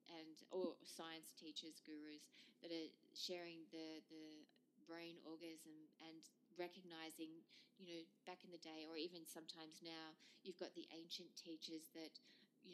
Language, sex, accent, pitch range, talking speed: English, female, Australian, 160-195 Hz, 150 wpm